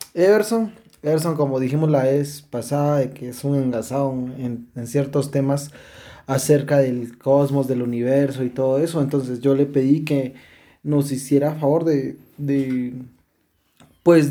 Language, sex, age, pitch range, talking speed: Spanish, male, 20-39, 130-160 Hz, 145 wpm